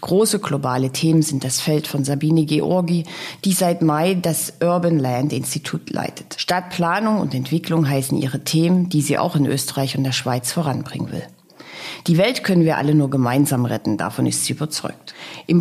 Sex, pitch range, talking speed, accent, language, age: female, 145-185 Hz, 175 wpm, German, German, 40-59